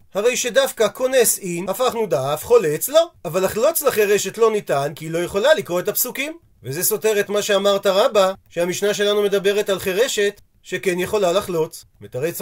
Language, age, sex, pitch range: Hebrew, 40-59, male, 175-245 Hz